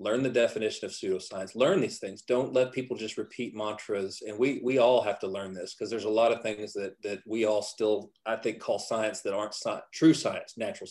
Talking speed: 235 wpm